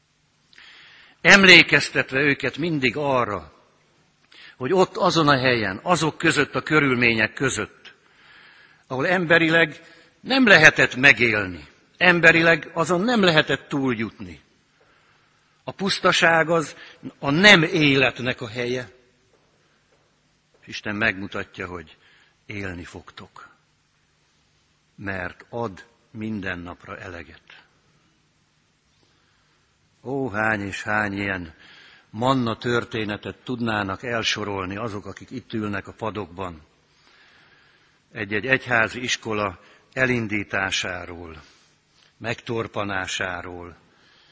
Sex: male